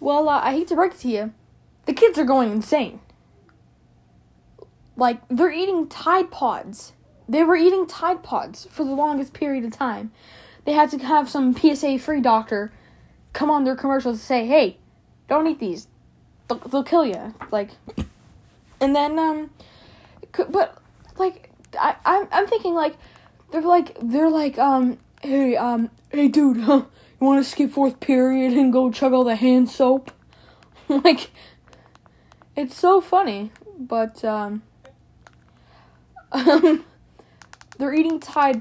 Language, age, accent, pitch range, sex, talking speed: English, 10-29, American, 235-315 Hz, female, 145 wpm